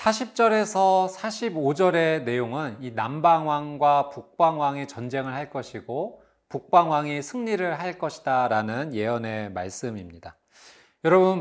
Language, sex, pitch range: Korean, male, 125-180 Hz